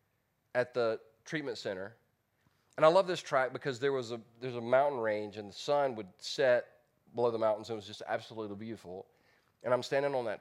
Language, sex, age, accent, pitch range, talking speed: English, male, 30-49, American, 120-190 Hz, 210 wpm